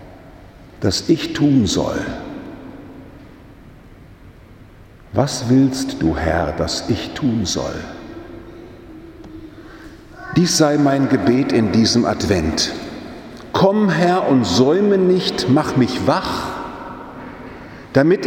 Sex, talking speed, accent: male, 90 wpm, German